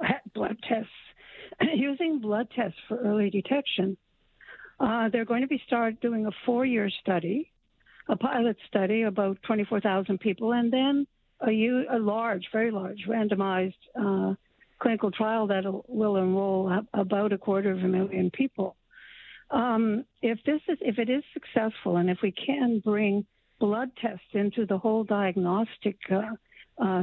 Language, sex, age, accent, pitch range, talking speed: English, female, 60-79, American, 195-240 Hz, 155 wpm